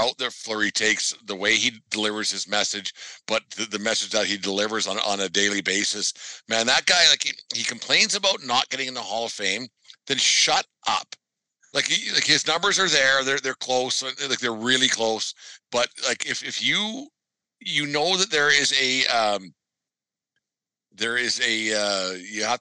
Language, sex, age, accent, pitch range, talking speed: English, male, 50-69, American, 105-130 Hz, 190 wpm